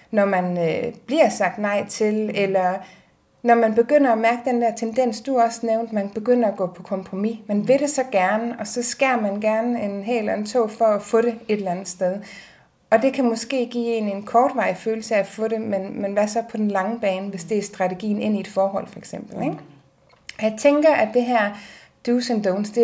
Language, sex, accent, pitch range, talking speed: Danish, female, native, 205-240 Hz, 225 wpm